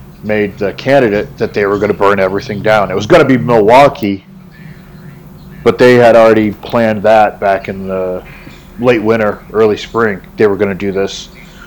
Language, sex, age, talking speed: English, male, 40-59, 185 wpm